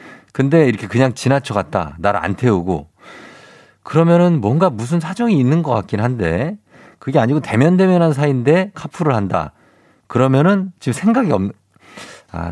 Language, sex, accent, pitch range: Korean, male, native, 95-150 Hz